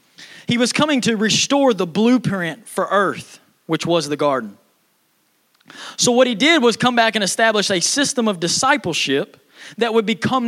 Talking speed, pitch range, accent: 165 wpm, 170-230 Hz, American